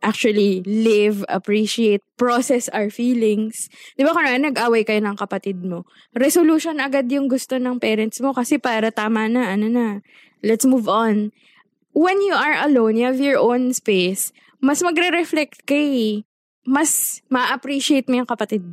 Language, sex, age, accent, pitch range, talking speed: English, female, 20-39, Filipino, 210-275 Hz, 145 wpm